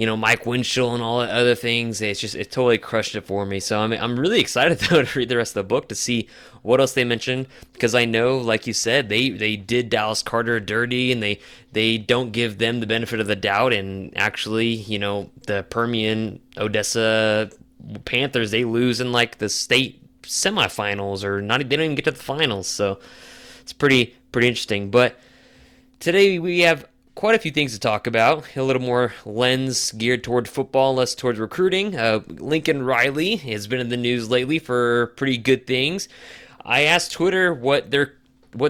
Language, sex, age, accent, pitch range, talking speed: English, male, 20-39, American, 110-135 Hz, 200 wpm